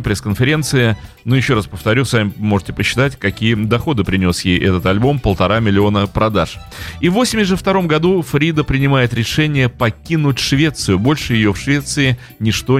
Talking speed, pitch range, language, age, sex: 145 wpm, 95-130 Hz, Russian, 30-49, male